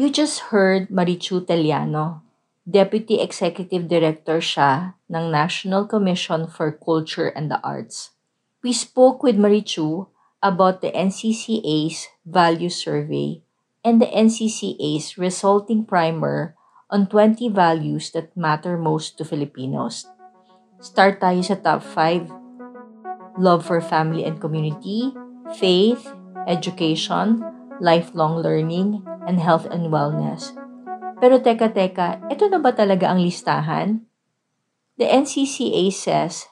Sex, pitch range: female, 165-220 Hz